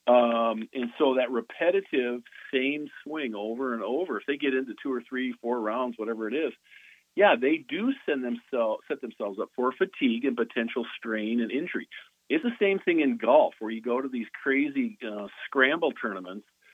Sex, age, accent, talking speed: male, 50-69, American, 185 wpm